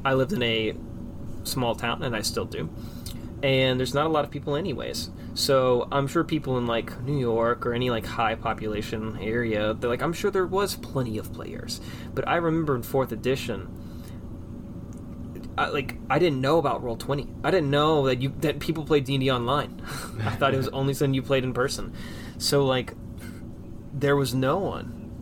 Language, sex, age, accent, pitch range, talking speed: English, male, 20-39, American, 115-140 Hz, 195 wpm